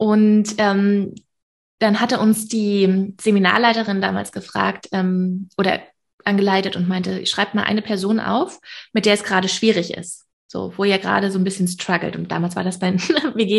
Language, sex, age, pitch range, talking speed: German, female, 20-39, 185-220 Hz, 170 wpm